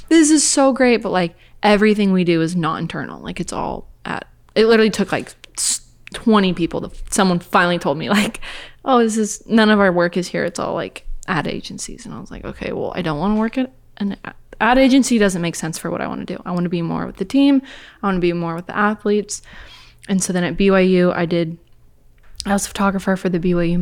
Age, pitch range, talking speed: 20-39, 165-200 Hz, 245 wpm